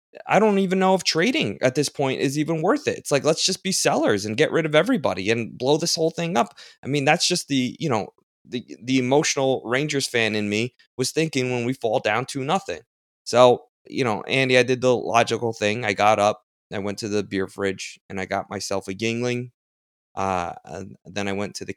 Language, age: English, 20-39